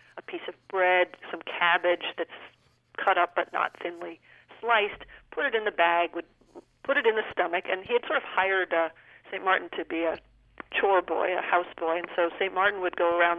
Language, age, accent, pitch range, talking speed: English, 50-69, American, 175-195 Hz, 210 wpm